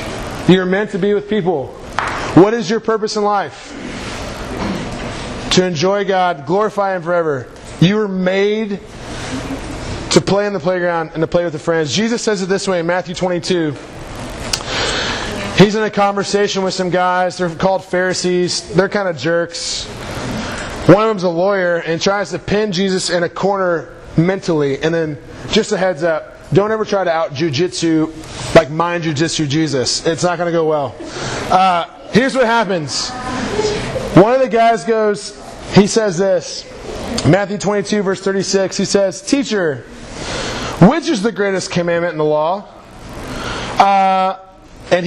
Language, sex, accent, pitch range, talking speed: English, male, American, 170-200 Hz, 155 wpm